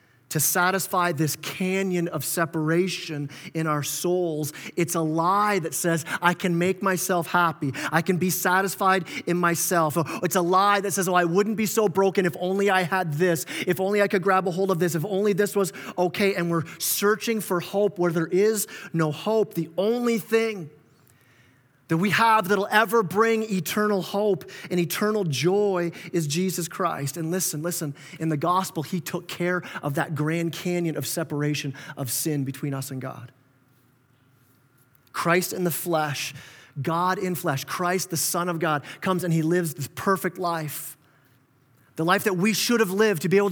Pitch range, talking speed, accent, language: 150-195 Hz, 180 wpm, American, English